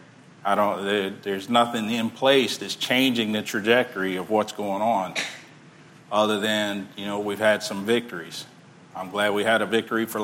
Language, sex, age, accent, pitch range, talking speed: English, male, 50-69, American, 105-135 Hz, 170 wpm